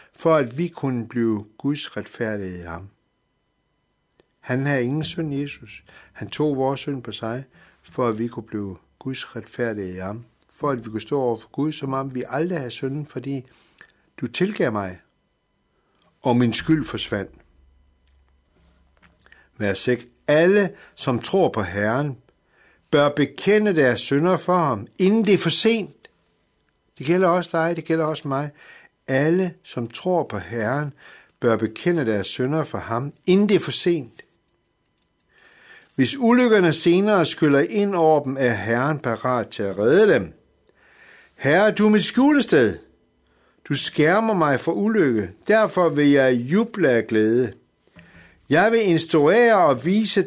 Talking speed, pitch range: 155 wpm, 115-170 Hz